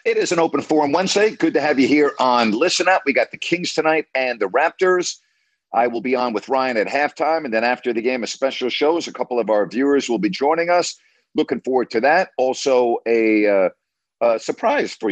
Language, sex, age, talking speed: English, male, 50-69, 225 wpm